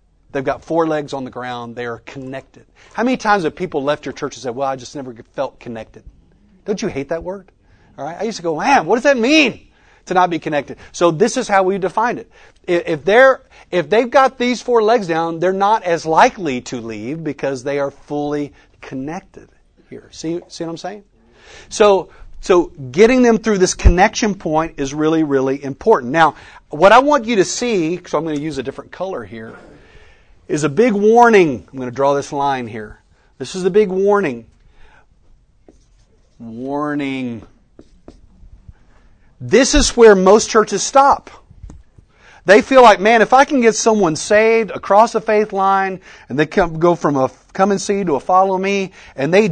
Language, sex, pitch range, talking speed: English, male, 140-215 Hz, 195 wpm